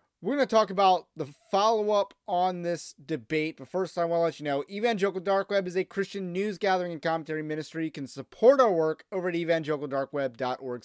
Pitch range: 145-195 Hz